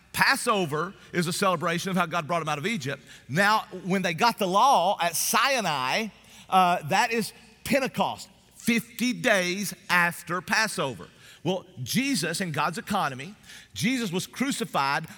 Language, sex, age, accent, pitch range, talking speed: English, male, 40-59, American, 160-205 Hz, 140 wpm